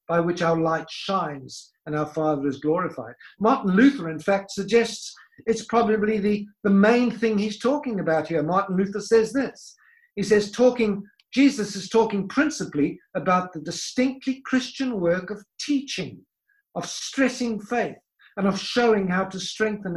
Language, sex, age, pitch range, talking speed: English, male, 50-69, 160-215 Hz, 155 wpm